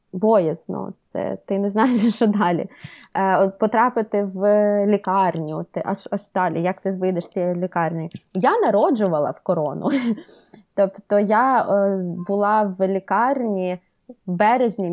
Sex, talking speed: female, 115 wpm